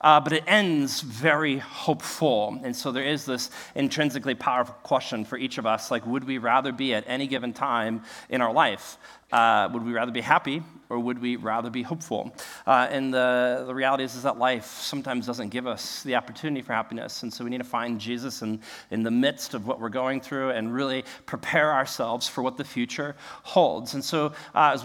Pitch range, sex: 125-155 Hz, male